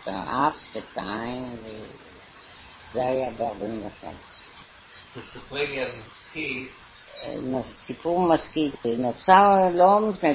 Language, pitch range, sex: Hebrew, 110-135 Hz, female